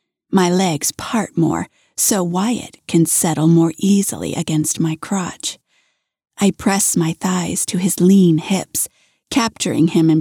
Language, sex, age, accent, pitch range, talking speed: English, female, 30-49, American, 170-225 Hz, 140 wpm